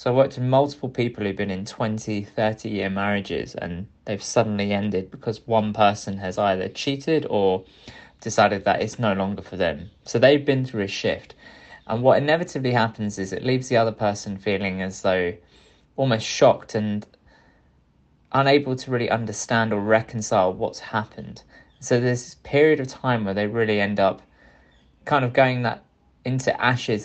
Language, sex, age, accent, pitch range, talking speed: English, male, 20-39, British, 95-120 Hz, 170 wpm